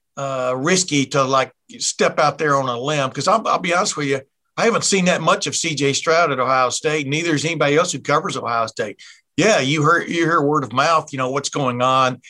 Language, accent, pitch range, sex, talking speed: English, American, 130-155 Hz, male, 240 wpm